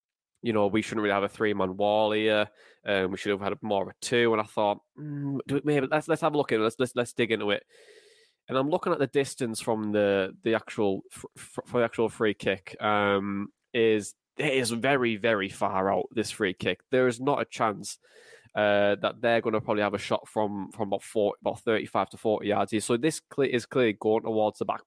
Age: 10-29